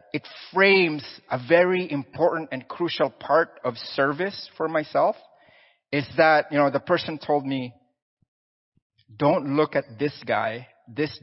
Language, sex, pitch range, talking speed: English, male, 115-155 Hz, 140 wpm